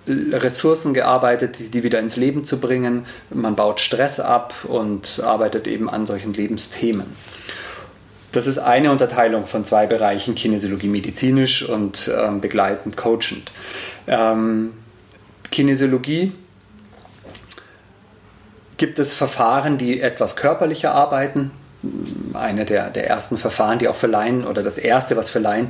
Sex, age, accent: male, 30-49, German